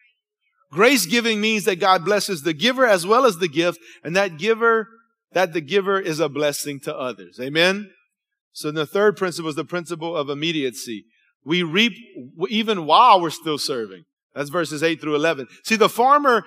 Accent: American